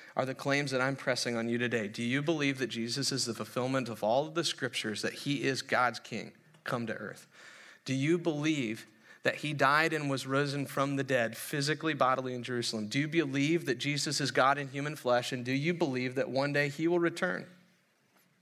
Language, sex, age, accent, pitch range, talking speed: English, male, 40-59, American, 125-165 Hz, 215 wpm